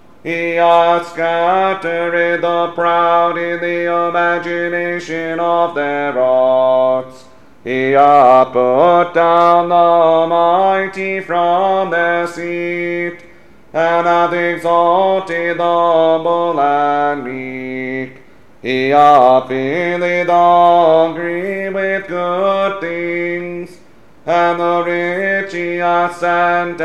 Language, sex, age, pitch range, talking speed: English, male, 40-59, 150-175 Hz, 90 wpm